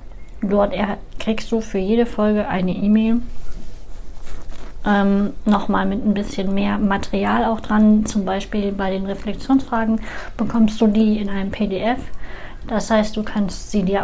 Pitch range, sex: 195-220 Hz, female